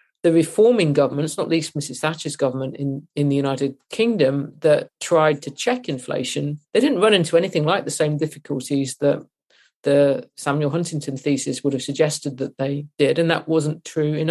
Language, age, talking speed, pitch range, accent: English, 40-59, 180 wpm, 140-165 Hz, British